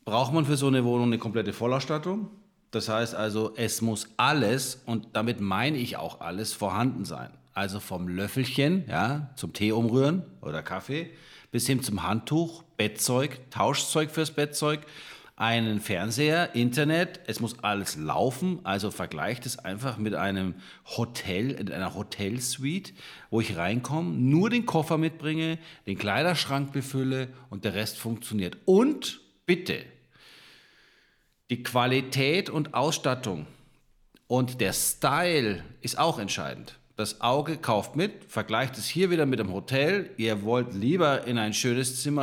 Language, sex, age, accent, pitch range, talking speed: German, male, 40-59, German, 110-145 Hz, 145 wpm